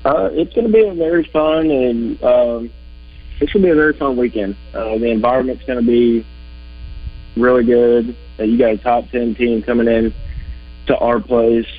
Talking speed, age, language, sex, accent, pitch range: 185 wpm, 20-39, English, male, American, 85-115 Hz